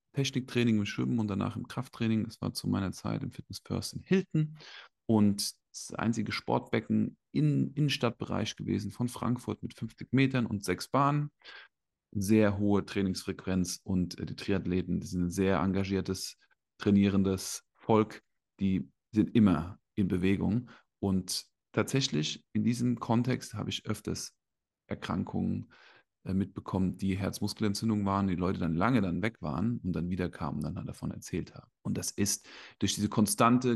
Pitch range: 95-120 Hz